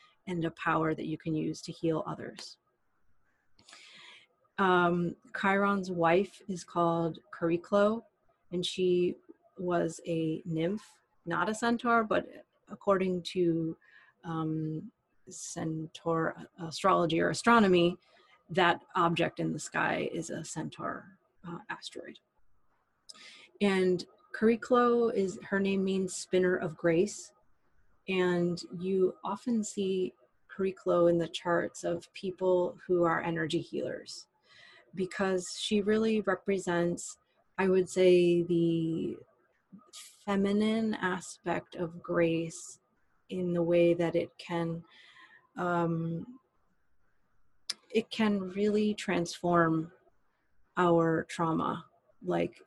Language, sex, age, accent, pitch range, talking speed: English, female, 30-49, American, 170-195 Hz, 105 wpm